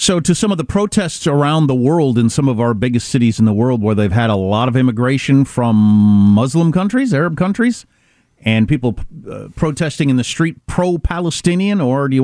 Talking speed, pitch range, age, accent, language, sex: 200 wpm, 110-180 Hz, 40-59, American, English, male